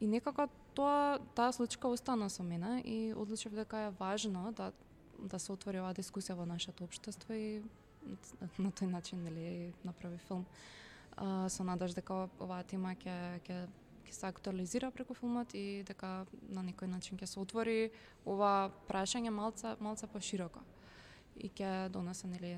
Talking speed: 155 wpm